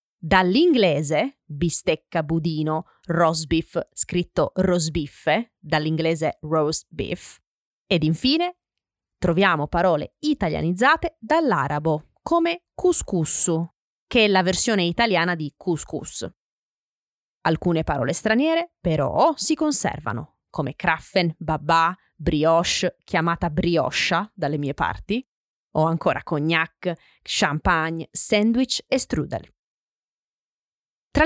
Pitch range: 160-220 Hz